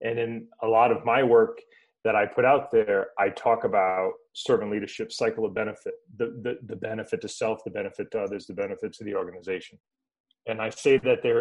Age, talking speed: 30-49, 210 wpm